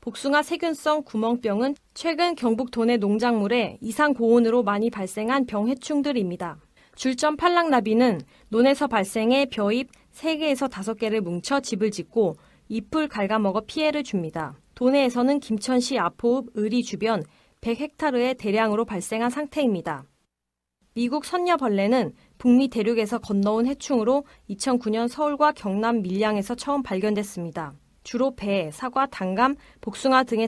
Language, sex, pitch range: Korean, female, 205-265 Hz